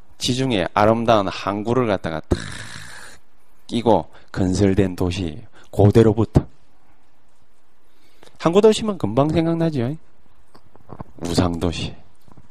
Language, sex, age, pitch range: Korean, male, 40-59, 95-155 Hz